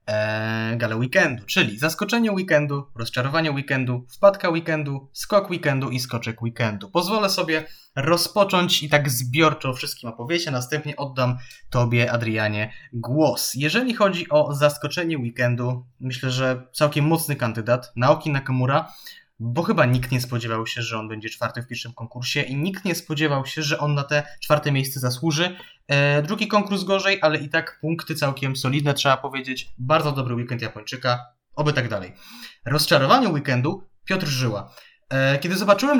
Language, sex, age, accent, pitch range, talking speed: Polish, male, 20-39, native, 125-160 Hz, 150 wpm